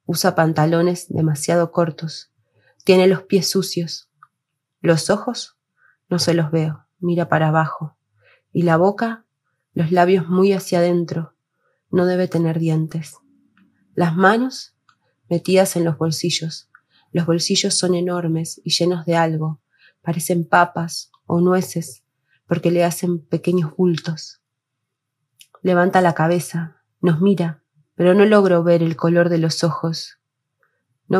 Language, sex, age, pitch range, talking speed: Spanish, female, 20-39, 155-180 Hz, 130 wpm